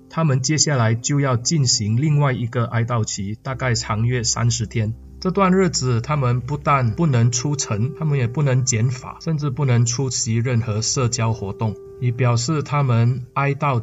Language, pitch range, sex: Chinese, 115-150 Hz, male